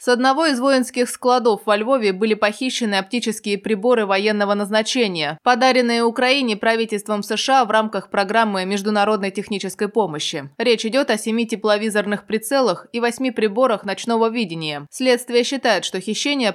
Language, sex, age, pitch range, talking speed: Russian, female, 20-39, 190-235 Hz, 140 wpm